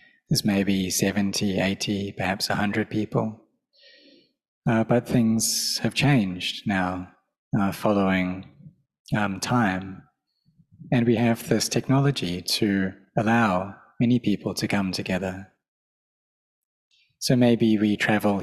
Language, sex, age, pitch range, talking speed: English, male, 20-39, 95-120 Hz, 105 wpm